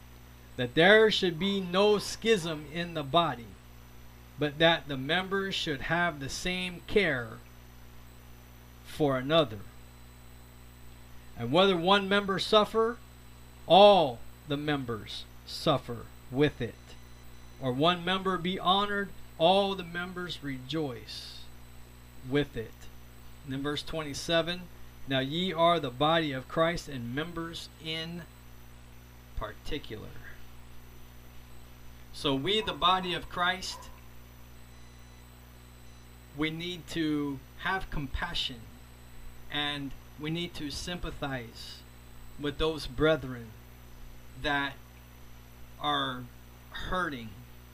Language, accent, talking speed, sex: English, American, 100 wpm, male